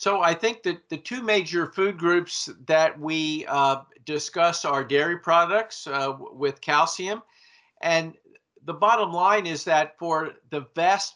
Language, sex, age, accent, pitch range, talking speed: English, male, 50-69, American, 145-175 Hz, 150 wpm